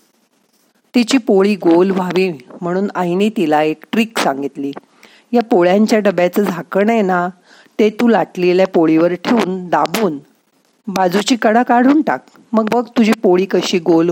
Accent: native